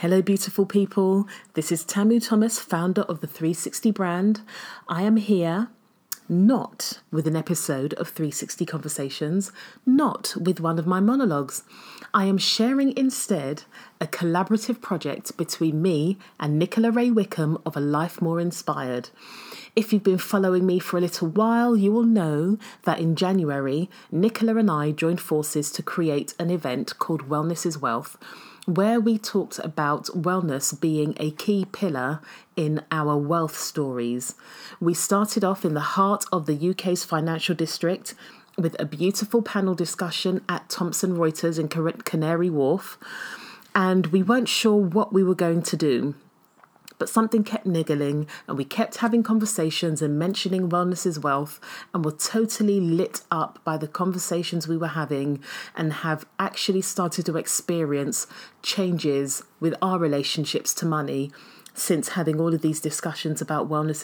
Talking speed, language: 155 wpm, English